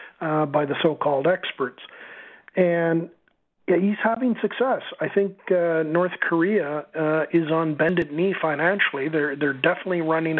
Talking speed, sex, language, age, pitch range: 145 wpm, male, English, 50-69, 150-165 Hz